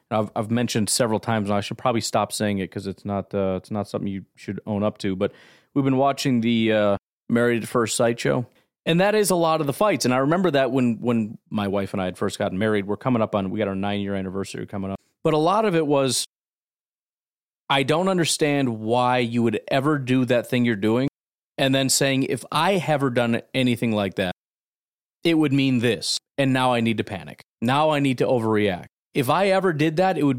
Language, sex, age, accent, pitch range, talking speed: English, male, 30-49, American, 105-140 Hz, 235 wpm